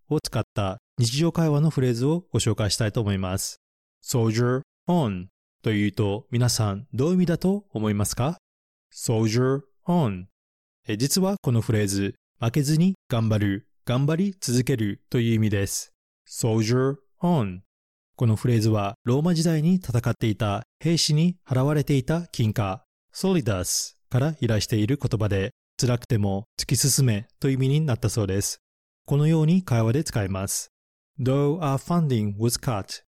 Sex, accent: male, native